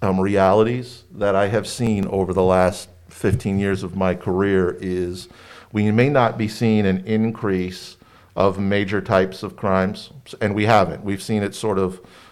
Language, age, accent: English, 50-69, American